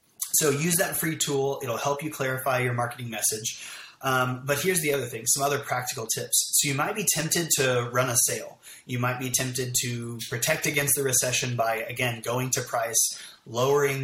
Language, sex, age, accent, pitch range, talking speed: English, male, 30-49, American, 120-140 Hz, 195 wpm